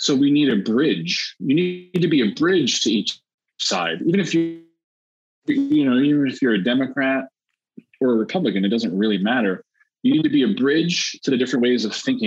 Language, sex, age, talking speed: English, male, 30-49, 210 wpm